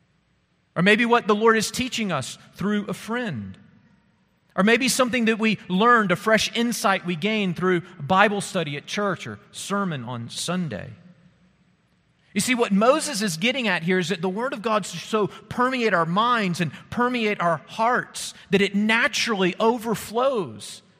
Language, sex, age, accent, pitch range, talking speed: English, male, 40-59, American, 155-210 Hz, 165 wpm